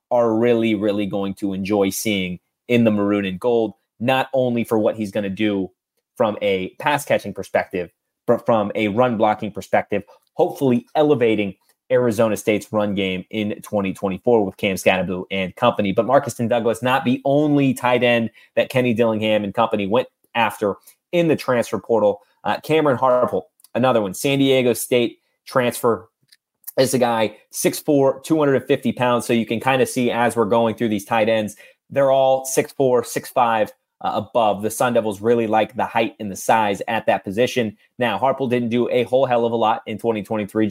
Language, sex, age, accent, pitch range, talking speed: English, male, 30-49, American, 110-130 Hz, 175 wpm